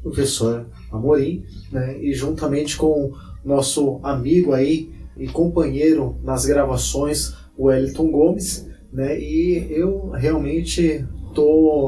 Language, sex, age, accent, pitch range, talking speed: Portuguese, male, 20-39, Brazilian, 135-170 Hz, 105 wpm